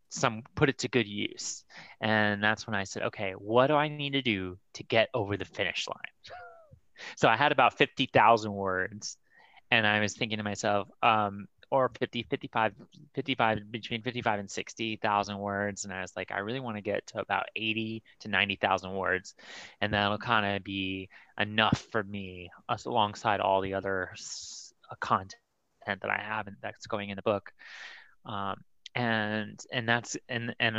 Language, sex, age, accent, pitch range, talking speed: English, male, 30-49, American, 100-115 Hz, 175 wpm